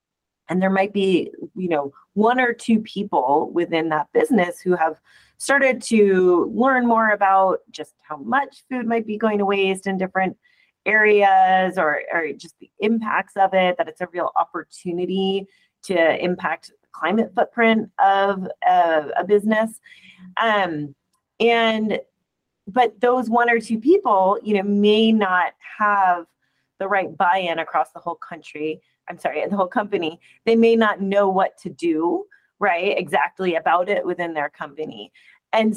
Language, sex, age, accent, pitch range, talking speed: English, female, 30-49, American, 180-230 Hz, 155 wpm